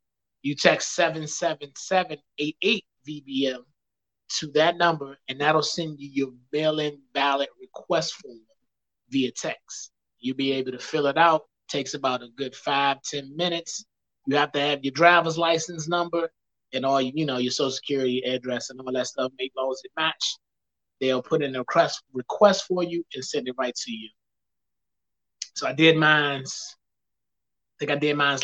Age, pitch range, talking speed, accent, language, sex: 20-39, 135-180 Hz, 170 wpm, American, English, male